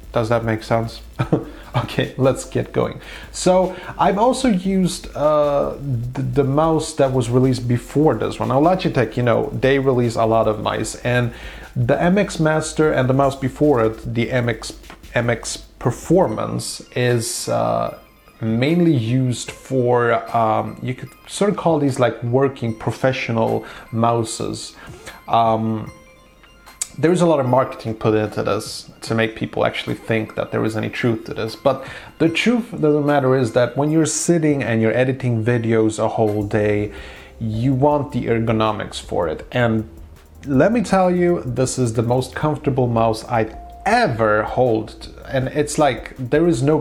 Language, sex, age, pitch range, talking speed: English, male, 30-49, 115-145 Hz, 165 wpm